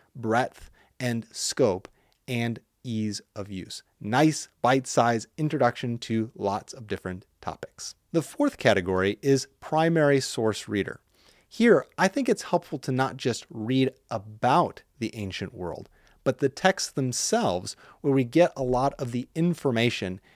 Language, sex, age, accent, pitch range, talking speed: English, male, 30-49, American, 110-145 Hz, 140 wpm